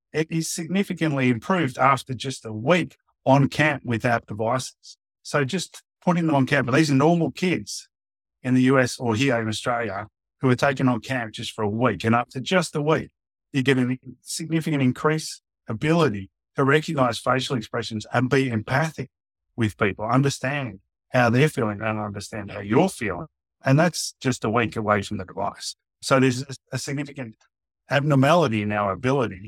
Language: English